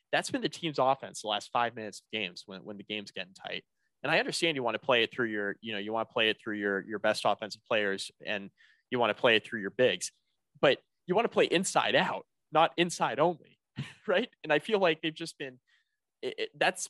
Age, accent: 20-39, American